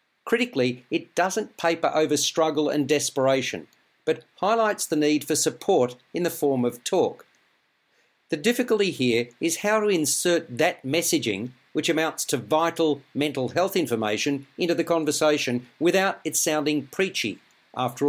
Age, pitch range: 50-69, 140-175 Hz